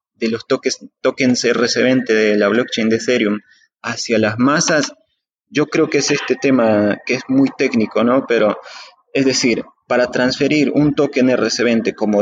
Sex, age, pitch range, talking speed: male, 30-49, 115-140 Hz, 160 wpm